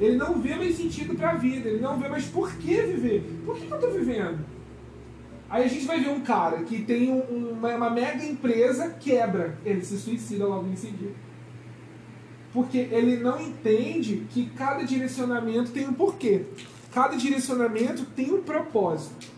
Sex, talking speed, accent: male, 170 wpm, Brazilian